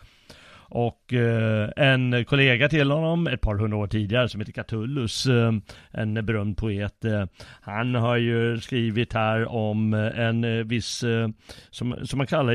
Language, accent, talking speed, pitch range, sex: Swedish, native, 135 wpm, 105-125 Hz, male